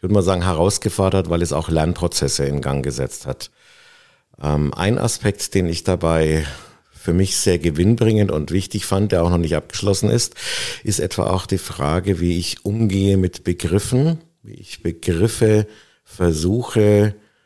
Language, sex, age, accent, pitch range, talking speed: German, male, 50-69, German, 85-100 Hz, 155 wpm